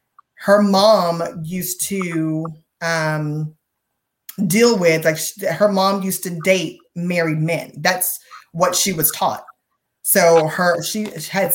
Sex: female